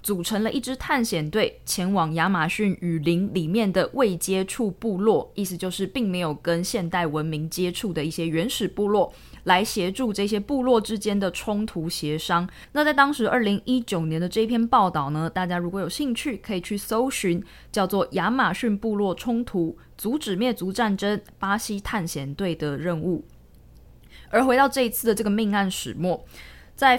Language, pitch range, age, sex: Chinese, 175-235 Hz, 20-39, female